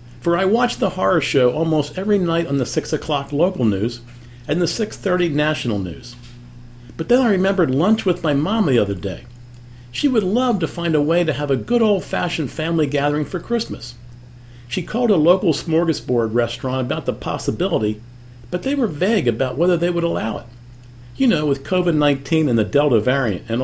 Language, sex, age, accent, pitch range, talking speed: English, male, 50-69, American, 120-190 Hz, 190 wpm